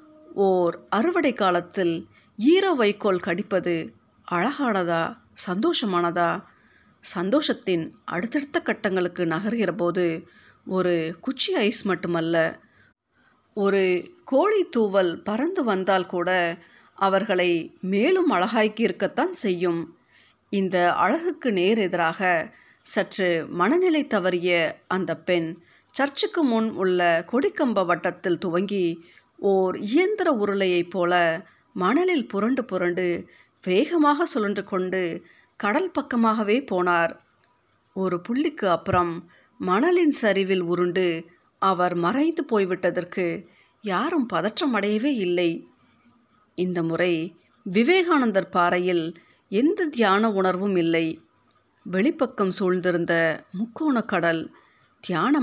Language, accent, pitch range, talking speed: Tamil, native, 175-245 Hz, 85 wpm